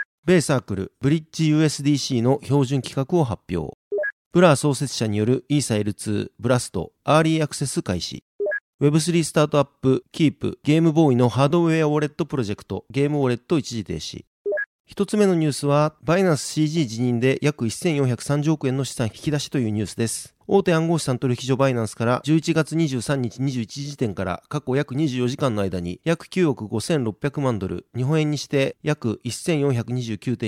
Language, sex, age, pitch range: Japanese, male, 40-59, 120-155 Hz